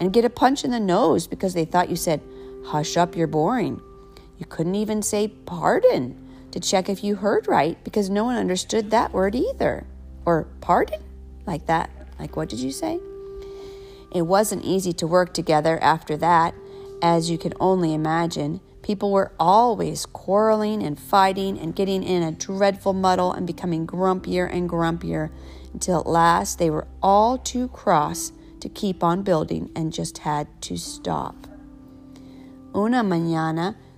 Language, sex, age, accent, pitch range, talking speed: English, female, 40-59, American, 160-210 Hz, 160 wpm